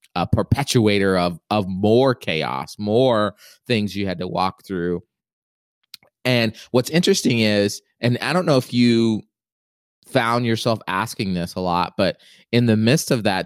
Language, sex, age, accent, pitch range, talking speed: English, male, 20-39, American, 105-120 Hz, 155 wpm